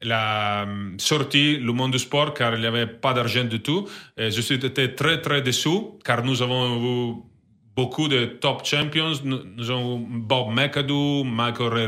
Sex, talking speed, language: male, 180 wpm, French